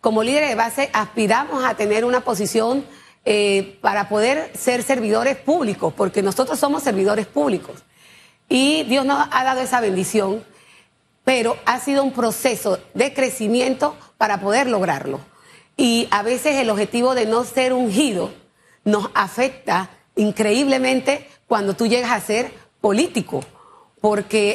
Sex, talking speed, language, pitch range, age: female, 135 wpm, Spanish, 205-260 Hz, 40-59